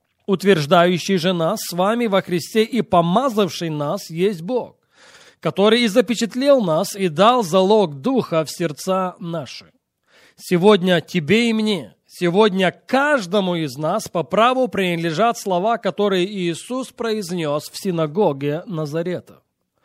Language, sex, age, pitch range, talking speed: Russian, male, 20-39, 170-225 Hz, 125 wpm